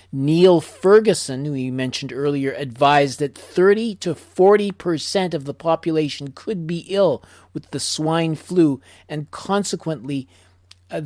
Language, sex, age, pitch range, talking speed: English, male, 40-59, 125-165 Hz, 135 wpm